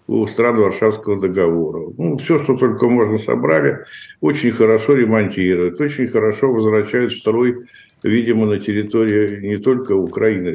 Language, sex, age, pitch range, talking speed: Russian, male, 60-79, 110-135 Hz, 135 wpm